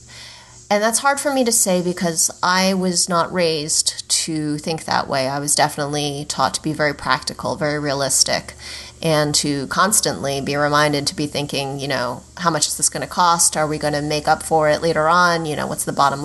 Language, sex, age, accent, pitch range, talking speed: English, female, 30-49, American, 145-175 Hz, 215 wpm